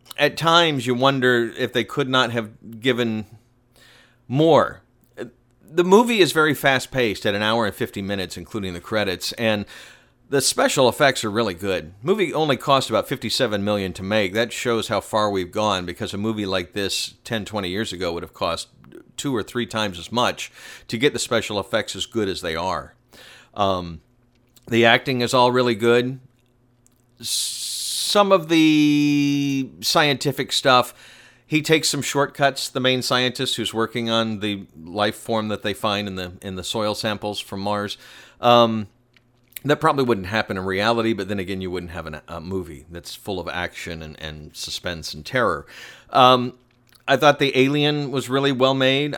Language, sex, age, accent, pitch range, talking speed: English, male, 50-69, American, 105-130 Hz, 175 wpm